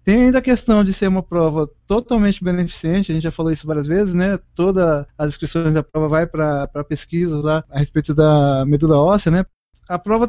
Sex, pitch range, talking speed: male, 165-210 Hz, 200 wpm